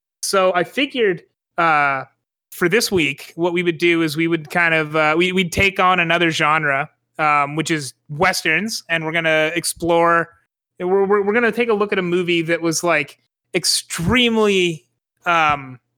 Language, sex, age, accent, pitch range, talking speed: English, male, 30-49, American, 155-185 Hz, 180 wpm